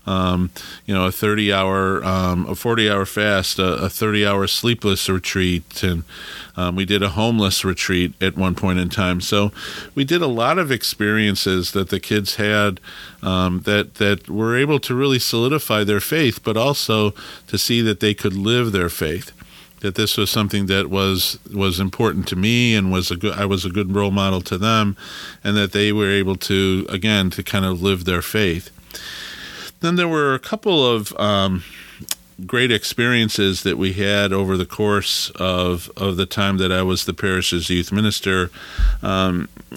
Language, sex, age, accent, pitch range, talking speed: English, male, 50-69, American, 95-110 Hz, 185 wpm